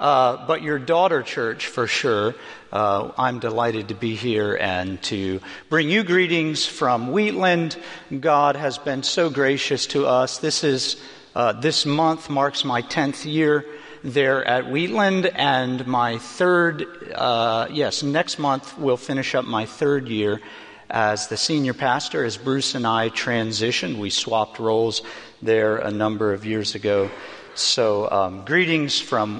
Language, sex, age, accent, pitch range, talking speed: English, male, 50-69, American, 110-140 Hz, 150 wpm